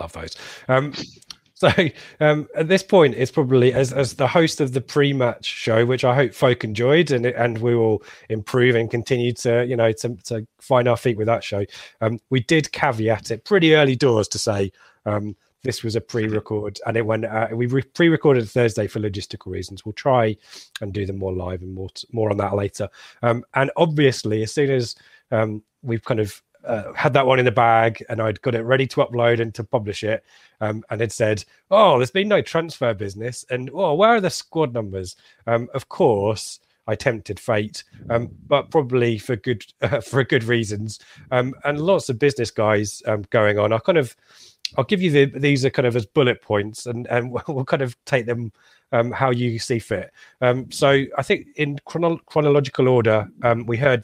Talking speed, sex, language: 205 wpm, male, English